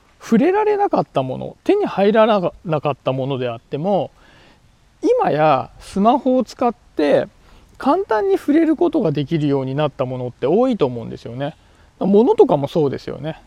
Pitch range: 135-220 Hz